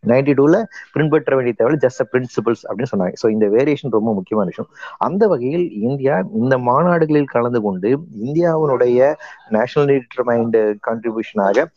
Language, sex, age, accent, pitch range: Tamil, male, 30-49, native, 105-145 Hz